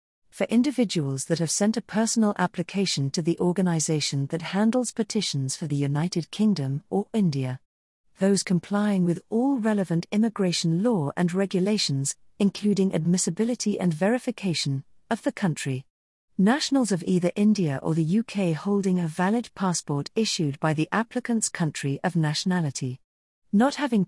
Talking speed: 140 wpm